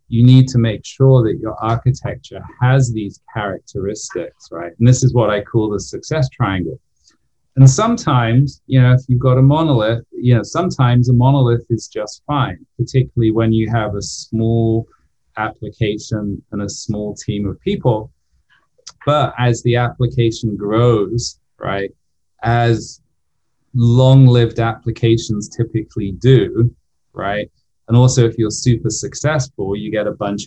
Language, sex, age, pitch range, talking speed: English, male, 30-49, 105-125 Hz, 145 wpm